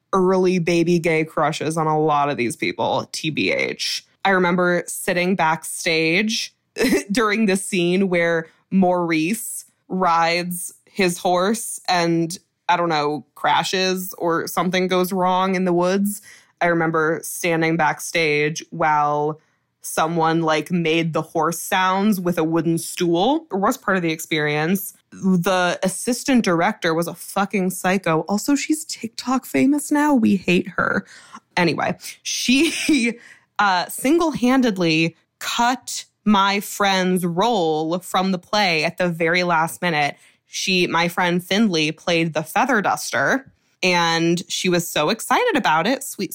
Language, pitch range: English, 165-205 Hz